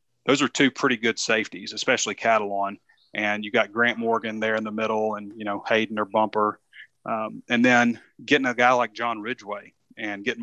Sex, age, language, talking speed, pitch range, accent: male, 30-49, English, 195 wpm, 105-120 Hz, American